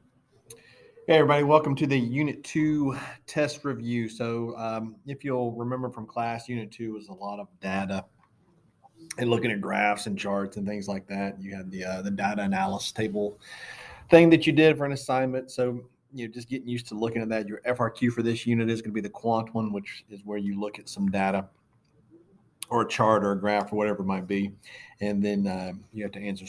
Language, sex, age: English, male, 30-49